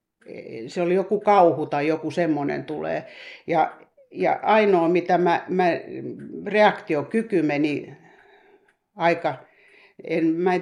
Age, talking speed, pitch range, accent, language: 60-79, 100 wpm, 150-200 Hz, native, Finnish